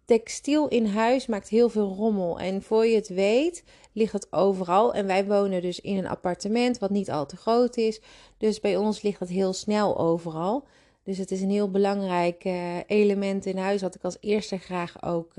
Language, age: Dutch, 30-49